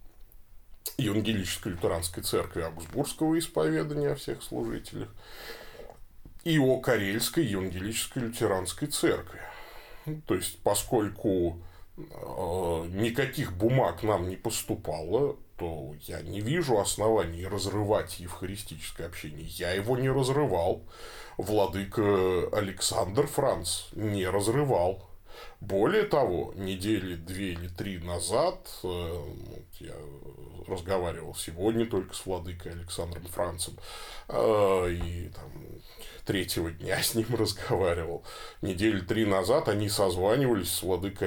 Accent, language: native, Russian